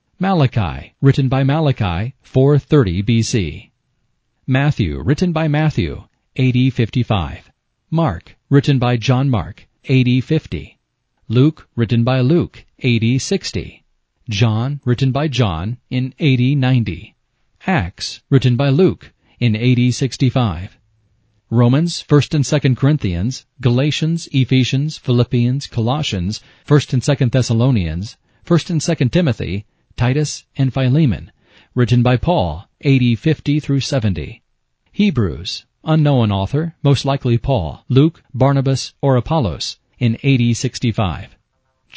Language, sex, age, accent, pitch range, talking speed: English, male, 40-59, American, 115-140 Hz, 105 wpm